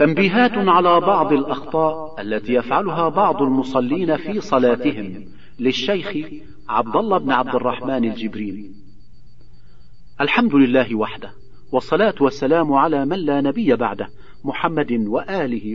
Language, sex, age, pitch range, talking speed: Arabic, male, 50-69, 115-155 Hz, 110 wpm